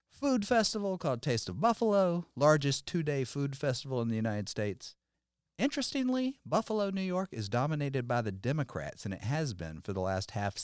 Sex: male